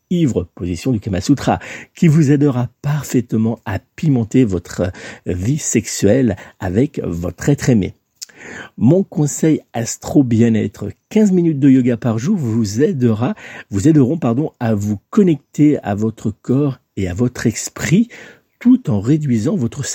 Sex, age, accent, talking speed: male, 50-69, French, 130 wpm